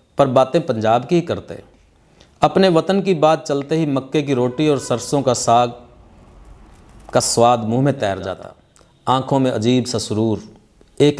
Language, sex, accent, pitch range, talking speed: Hindi, male, native, 115-155 Hz, 160 wpm